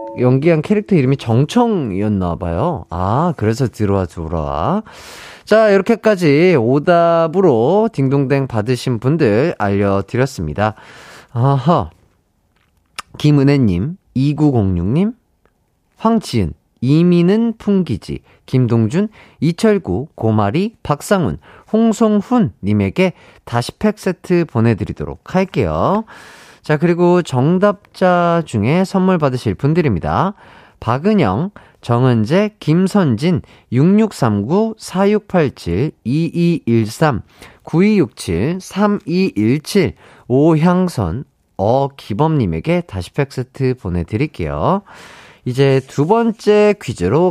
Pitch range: 110-185 Hz